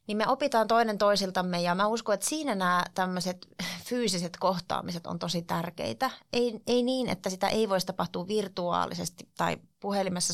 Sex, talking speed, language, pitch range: female, 165 wpm, Finnish, 180-225 Hz